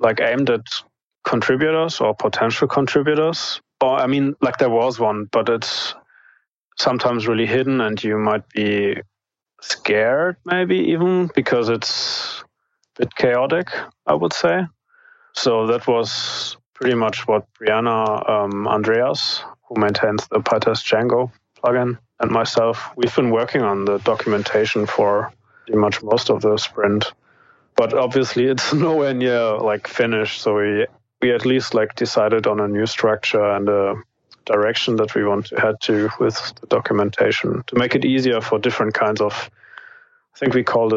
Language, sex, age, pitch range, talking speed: English, male, 30-49, 105-135 Hz, 155 wpm